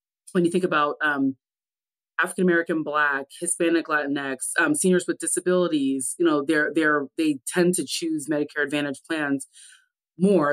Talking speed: 150 wpm